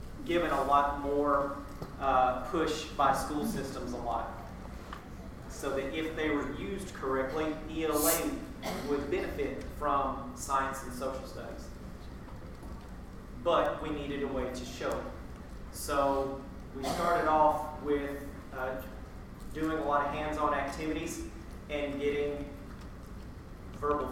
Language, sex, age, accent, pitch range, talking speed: English, male, 30-49, American, 125-145 Hz, 120 wpm